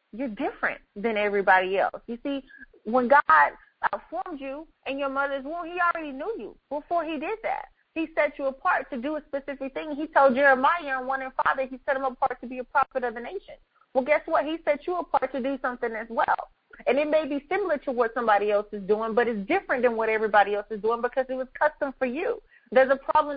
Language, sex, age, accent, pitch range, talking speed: English, female, 30-49, American, 235-300 Hz, 235 wpm